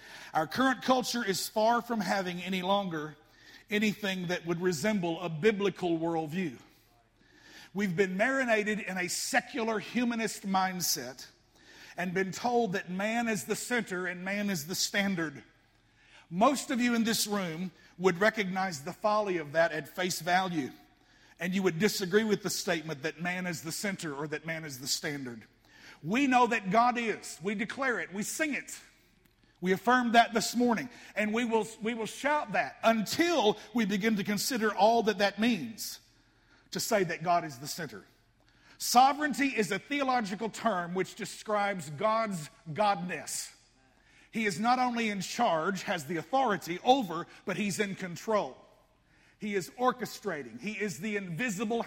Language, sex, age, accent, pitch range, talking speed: English, male, 50-69, American, 175-225 Hz, 160 wpm